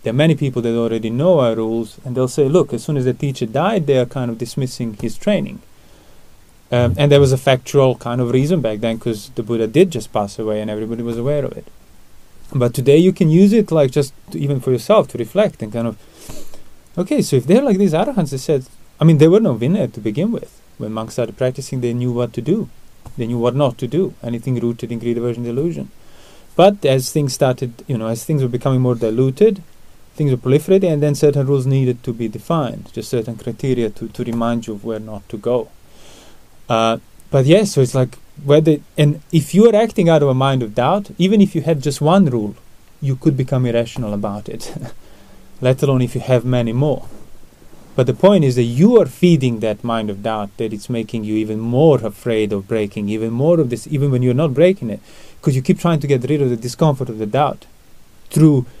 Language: English